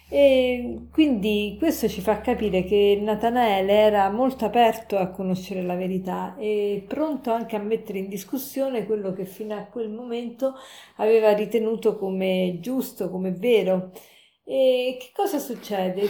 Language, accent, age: Italian, native, 50-69